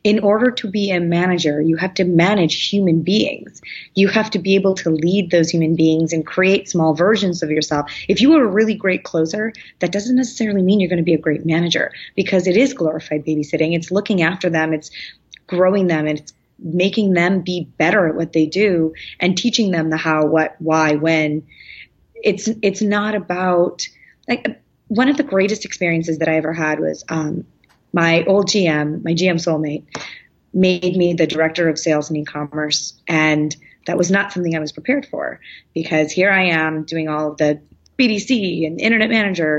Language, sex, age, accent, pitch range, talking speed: English, female, 30-49, American, 160-195 Hz, 190 wpm